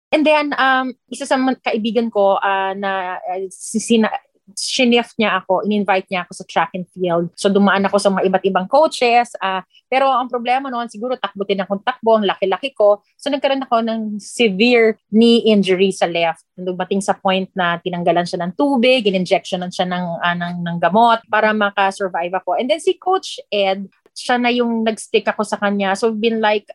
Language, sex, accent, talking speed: English, female, Filipino, 190 wpm